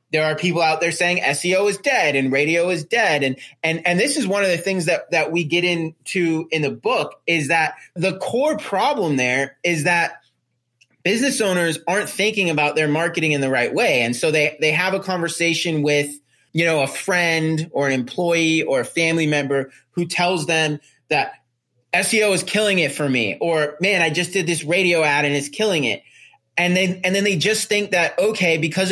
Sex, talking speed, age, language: male, 210 wpm, 30-49, English